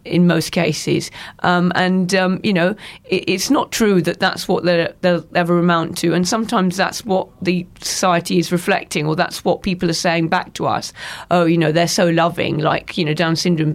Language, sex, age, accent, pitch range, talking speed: English, female, 40-59, British, 155-180 Hz, 205 wpm